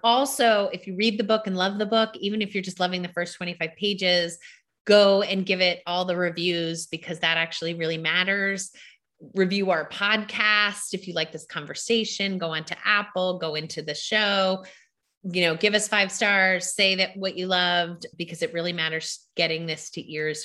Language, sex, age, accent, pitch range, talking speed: English, female, 30-49, American, 165-205 Hz, 195 wpm